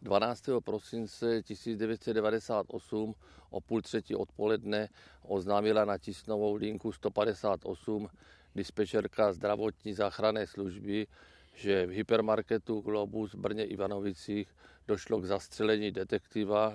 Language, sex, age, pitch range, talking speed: Czech, male, 50-69, 100-115 Hz, 95 wpm